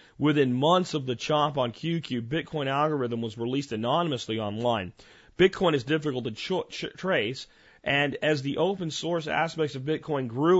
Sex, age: male, 40-59